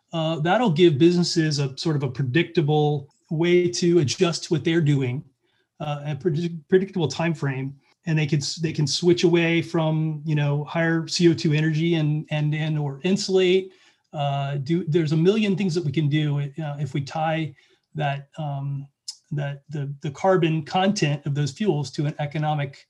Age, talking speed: 30-49, 175 wpm